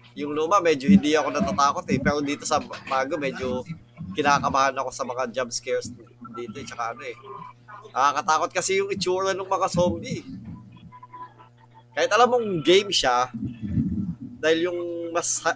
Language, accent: Filipino, native